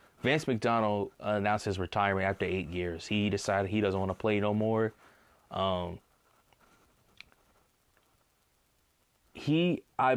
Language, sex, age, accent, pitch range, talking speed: English, male, 20-39, American, 100-120 Hz, 120 wpm